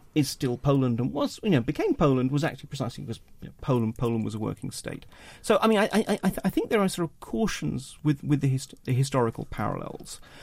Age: 40-59